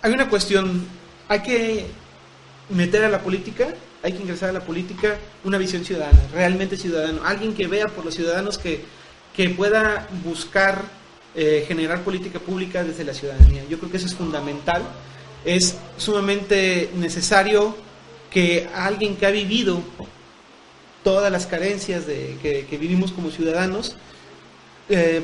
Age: 30-49